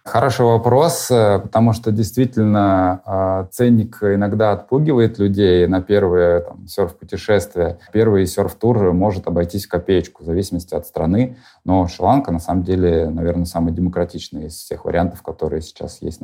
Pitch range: 85-105 Hz